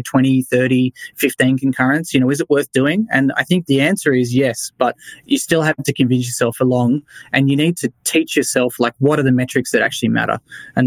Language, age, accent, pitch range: English, 20-39, Australian, 120-145 Hz